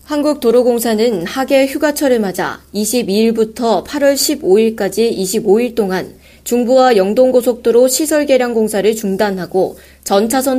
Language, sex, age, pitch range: Korean, female, 20-39, 195-260 Hz